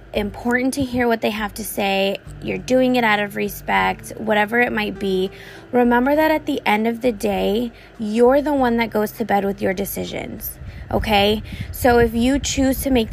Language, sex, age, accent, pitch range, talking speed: English, female, 20-39, American, 200-245 Hz, 195 wpm